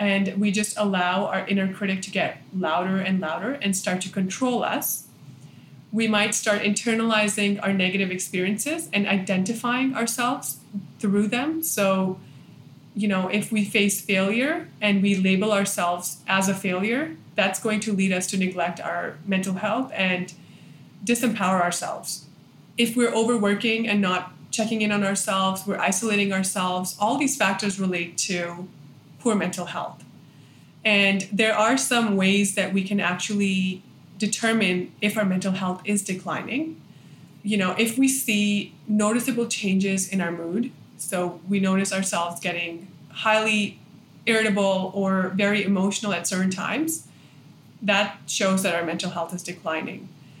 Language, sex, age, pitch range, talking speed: English, female, 20-39, 180-210 Hz, 145 wpm